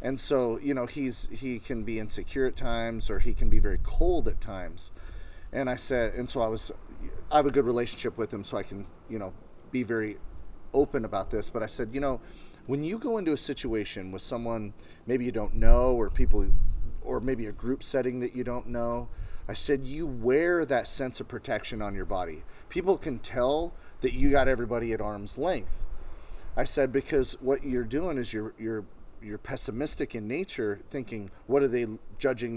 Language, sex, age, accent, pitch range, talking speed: English, male, 30-49, American, 100-130 Hz, 205 wpm